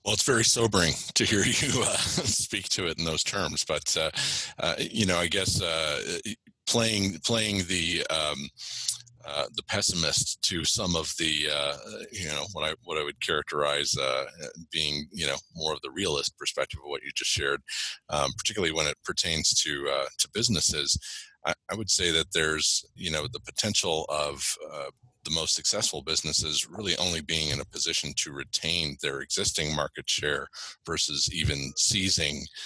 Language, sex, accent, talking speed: English, male, American, 175 wpm